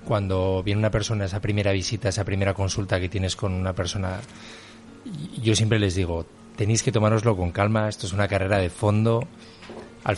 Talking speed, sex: 185 wpm, male